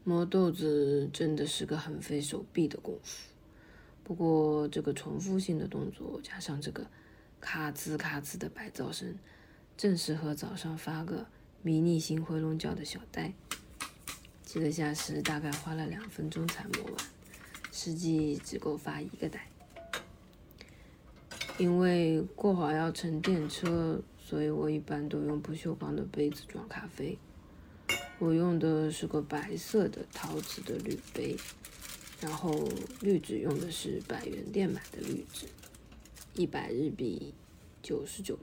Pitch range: 150-175 Hz